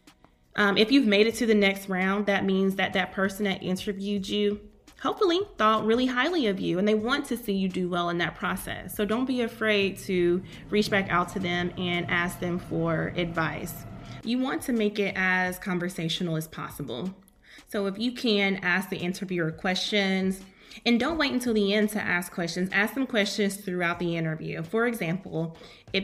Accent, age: American, 20-39